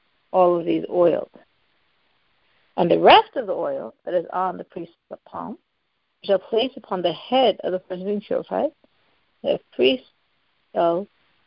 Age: 60-79